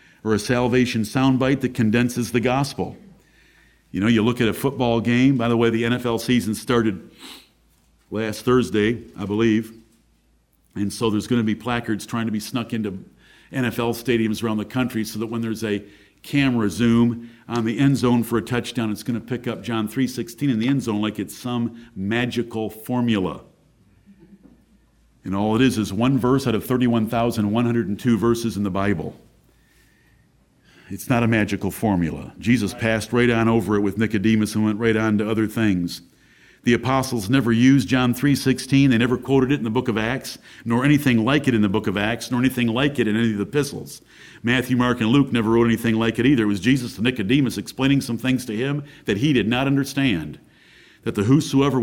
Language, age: English, 50-69